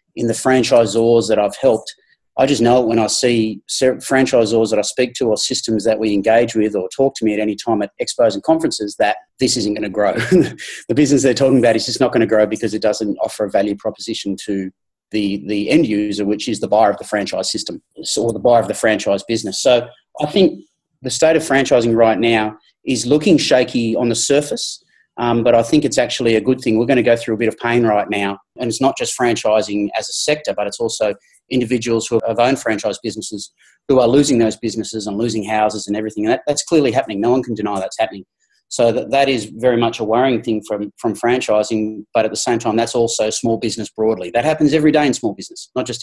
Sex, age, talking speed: male, 30-49, 240 wpm